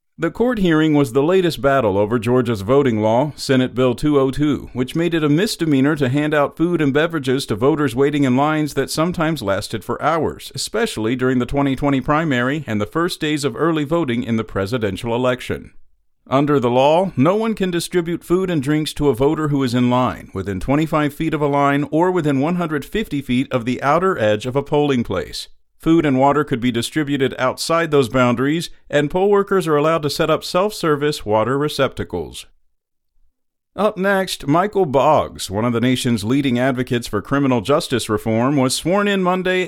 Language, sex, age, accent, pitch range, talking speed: English, male, 50-69, American, 120-155 Hz, 190 wpm